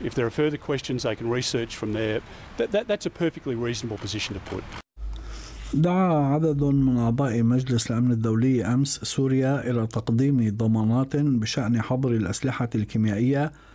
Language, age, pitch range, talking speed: Arabic, 60-79, 110-135 Hz, 145 wpm